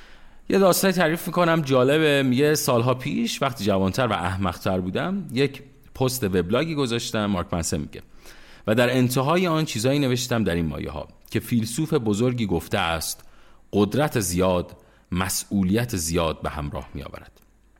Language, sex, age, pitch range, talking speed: Persian, male, 30-49, 100-145 Hz, 140 wpm